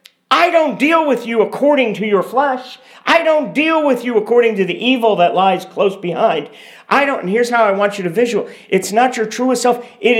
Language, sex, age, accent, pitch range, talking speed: English, male, 50-69, American, 180-250 Hz, 225 wpm